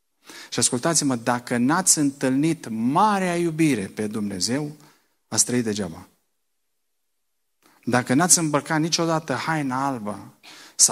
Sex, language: male, Romanian